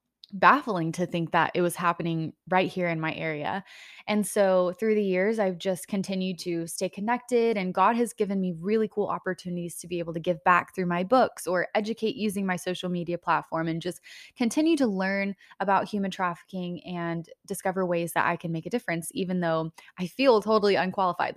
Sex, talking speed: female, 195 wpm